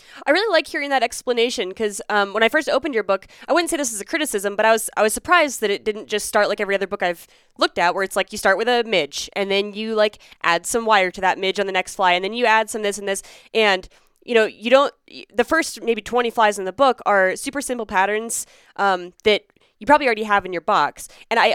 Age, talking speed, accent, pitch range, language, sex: 10-29, 275 wpm, American, 185-225 Hz, English, female